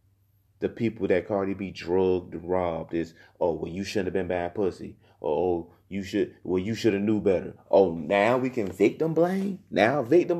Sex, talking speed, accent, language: male, 195 wpm, American, English